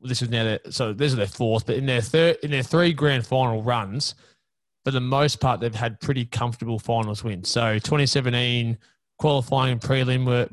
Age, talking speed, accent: 20-39, 195 wpm, Australian